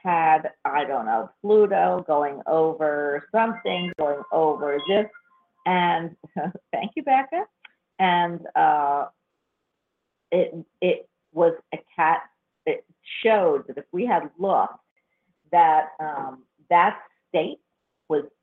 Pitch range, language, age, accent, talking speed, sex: 155-210 Hz, English, 50-69, American, 110 wpm, female